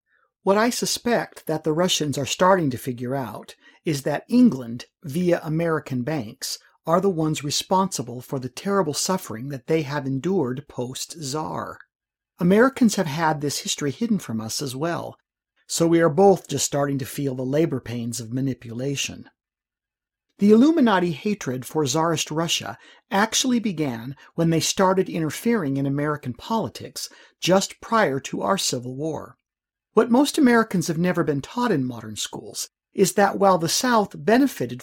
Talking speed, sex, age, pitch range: 155 wpm, male, 50-69, 140-195 Hz